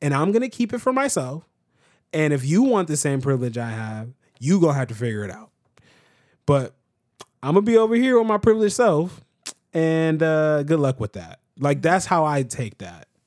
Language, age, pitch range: English, 20-39, 125-155 Hz